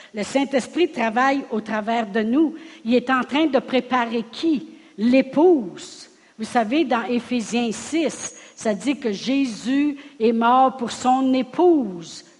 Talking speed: 140 wpm